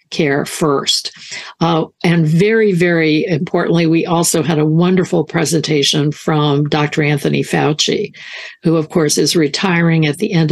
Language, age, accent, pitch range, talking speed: English, 60-79, American, 150-170 Hz, 145 wpm